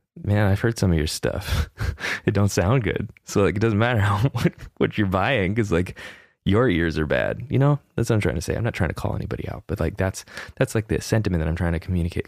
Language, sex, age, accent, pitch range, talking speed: English, male, 20-39, American, 95-125 Hz, 260 wpm